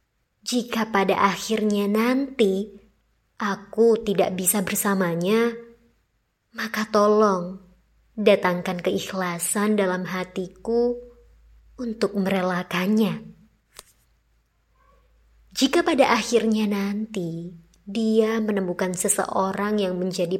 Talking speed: 75 wpm